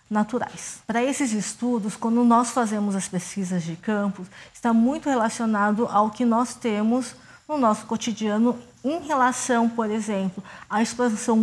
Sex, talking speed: female, 140 wpm